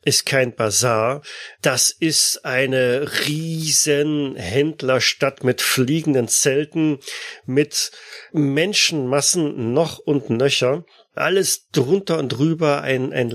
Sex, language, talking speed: male, German, 95 wpm